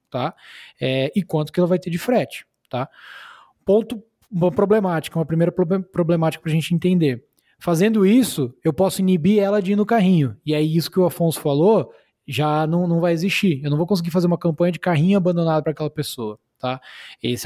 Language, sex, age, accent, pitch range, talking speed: Portuguese, male, 20-39, Brazilian, 145-185 Hz, 200 wpm